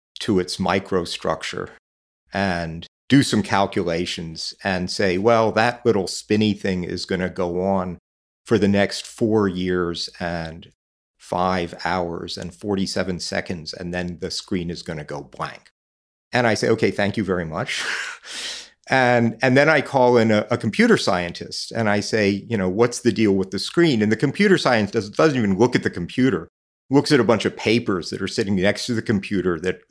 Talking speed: 185 wpm